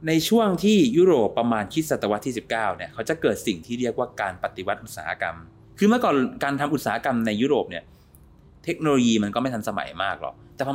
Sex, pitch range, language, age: male, 110-150 Hz, Thai, 20-39